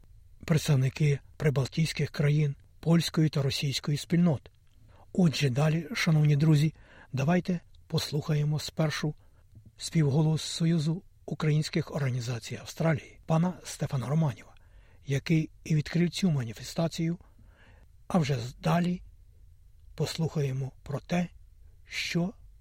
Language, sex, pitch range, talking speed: Ukrainian, male, 110-170 Hz, 90 wpm